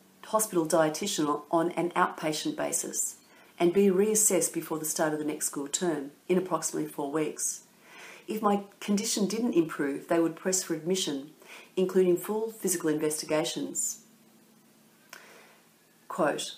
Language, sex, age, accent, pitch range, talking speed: English, female, 40-59, Australian, 160-205 Hz, 130 wpm